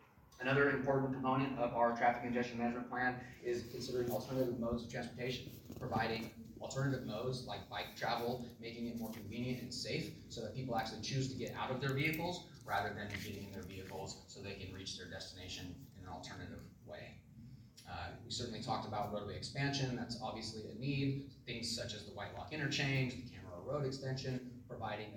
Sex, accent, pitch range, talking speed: male, American, 105-130 Hz, 185 wpm